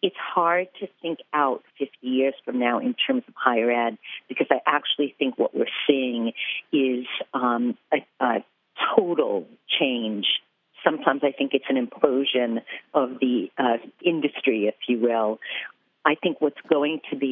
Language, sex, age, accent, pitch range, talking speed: English, female, 50-69, American, 125-150 Hz, 160 wpm